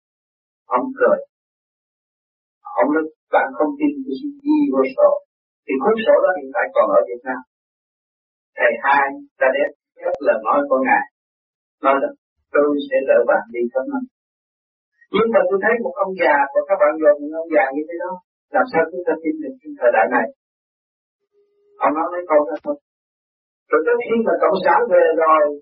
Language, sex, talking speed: Vietnamese, male, 180 wpm